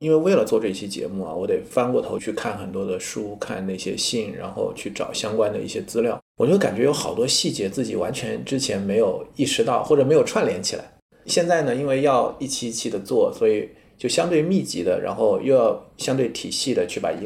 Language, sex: Chinese, male